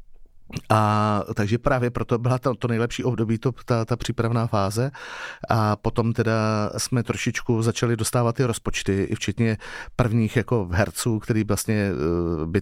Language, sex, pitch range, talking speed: Czech, male, 100-115 Hz, 145 wpm